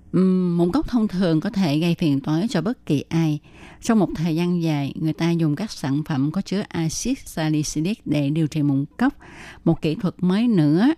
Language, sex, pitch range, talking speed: Vietnamese, female, 155-215 Hz, 210 wpm